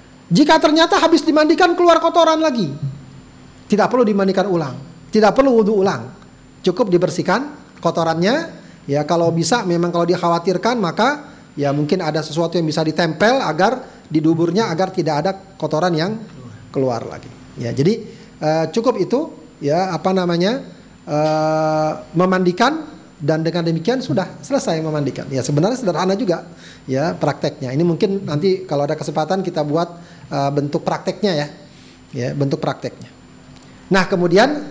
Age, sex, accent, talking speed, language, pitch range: 40-59, male, native, 135 wpm, Indonesian, 155-205 Hz